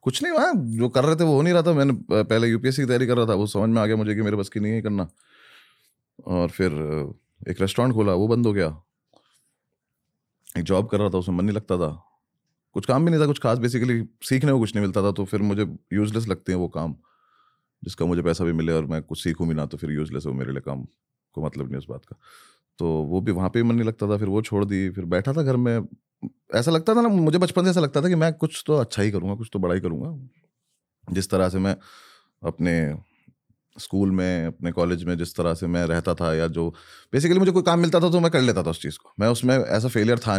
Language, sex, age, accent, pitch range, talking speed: Hindi, male, 30-49, native, 85-120 Hz, 260 wpm